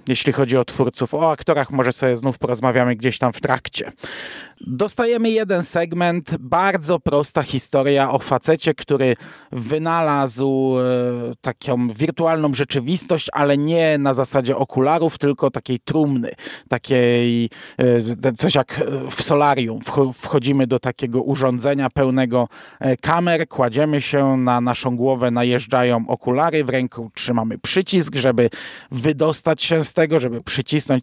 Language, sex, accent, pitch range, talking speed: Polish, male, native, 125-160 Hz, 125 wpm